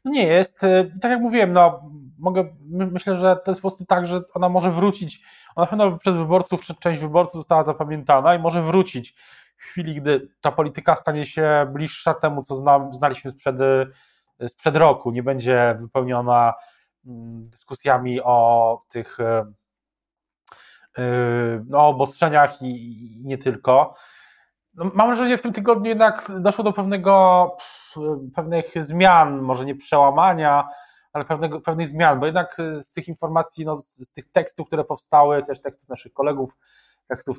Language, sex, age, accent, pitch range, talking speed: Polish, male, 20-39, native, 130-175 Hz, 145 wpm